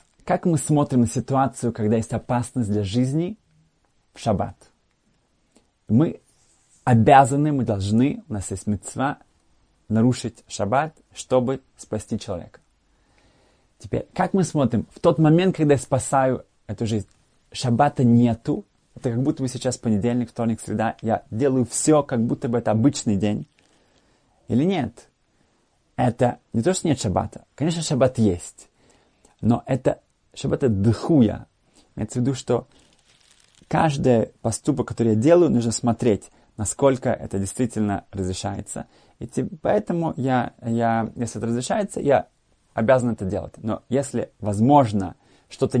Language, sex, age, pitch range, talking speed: Russian, male, 30-49, 110-135 Hz, 130 wpm